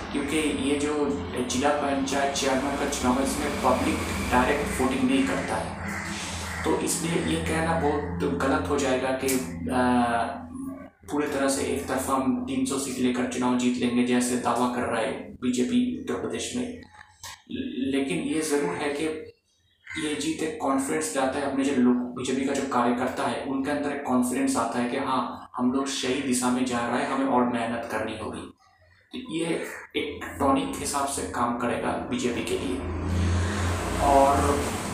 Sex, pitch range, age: male, 125-140 Hz, 20-39